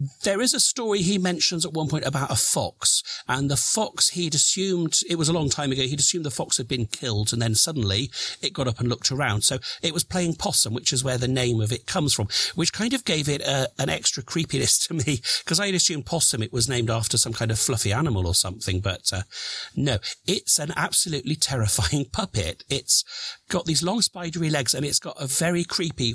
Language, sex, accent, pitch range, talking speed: English, male, British, 115-165 Hz, 225 wpm